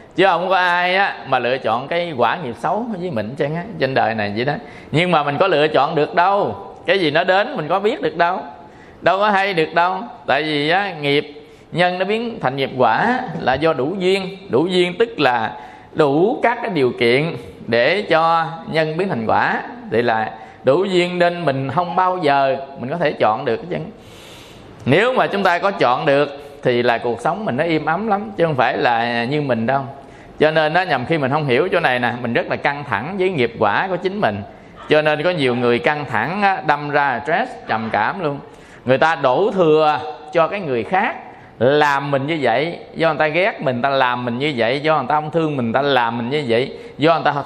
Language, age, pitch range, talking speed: Vietnamese, 20-39, 130-175 Hz, 230 wpm